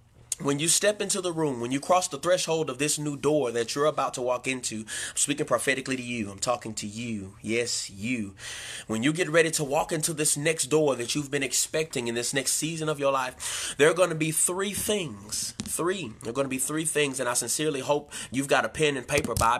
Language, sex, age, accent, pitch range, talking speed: English, male, 20-39, American, 115-150 Hz, 240 wpm